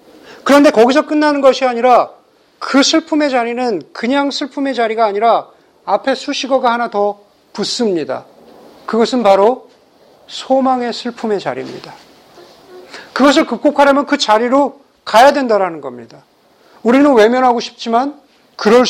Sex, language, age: male, Korean, 40-59